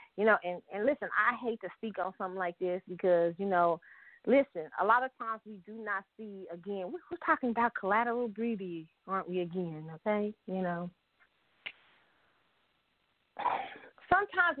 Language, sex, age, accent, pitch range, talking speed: English, female, 30-49, American, 180-225 Hz, 155 wpm